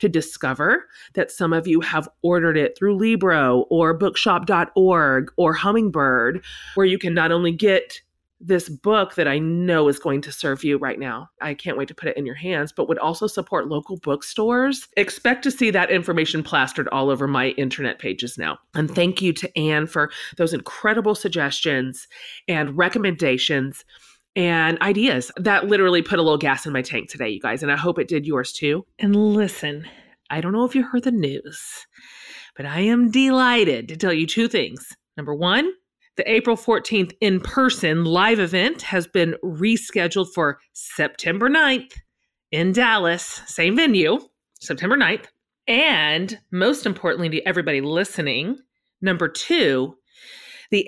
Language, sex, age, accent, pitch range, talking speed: English, female, 30-49, American, 155-215 Hz, 165 wpm